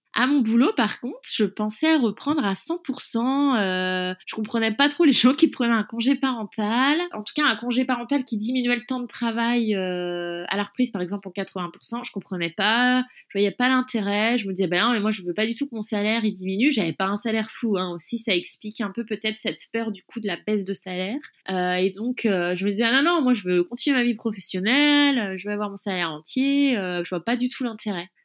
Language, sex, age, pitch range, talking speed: French, female, 20-39, 195-255 Hz, 250 wpm